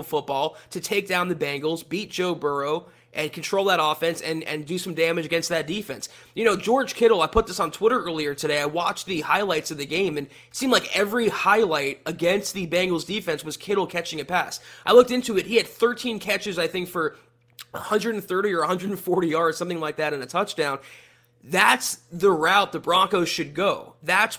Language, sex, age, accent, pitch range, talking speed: English, male, 20-39, American, 155-200 Hz, 205 wpm